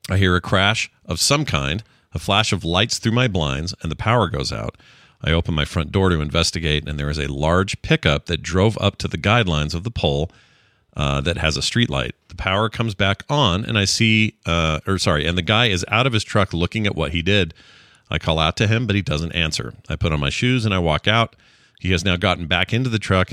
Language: English